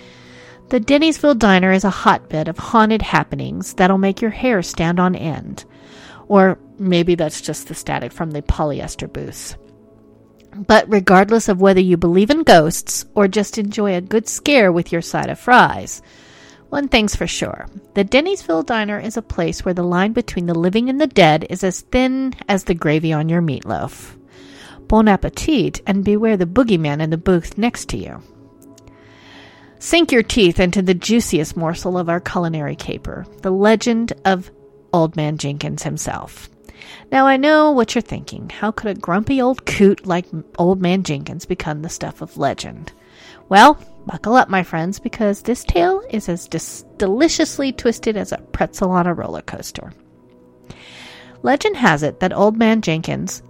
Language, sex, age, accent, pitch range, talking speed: English, female, 40-59, American, 170-230 Hz, 170 wpm